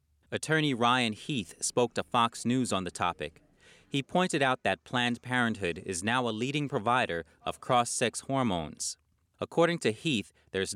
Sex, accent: male, American